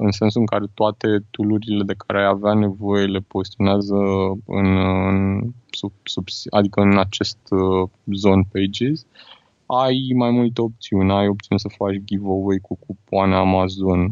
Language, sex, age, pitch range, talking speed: Romanian, male, 20-39, 95-110 Hz, 150 wpm